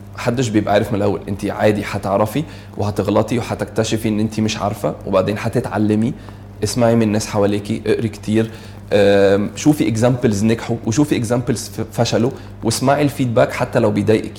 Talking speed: 140 wpm